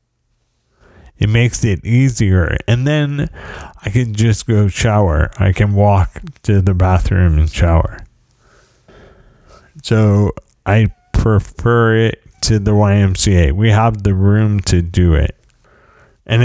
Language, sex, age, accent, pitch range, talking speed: English, male, 30-49, American, 95-120 Hz, 125 wpm